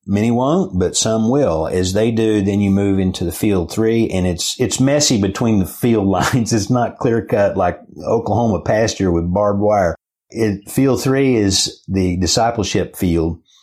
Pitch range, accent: 90-110 Hz, American